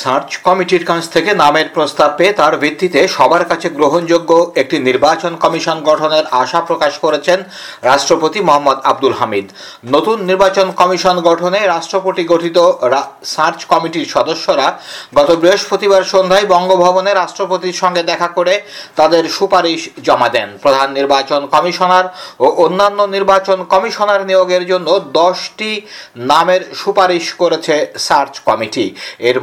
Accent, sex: native, male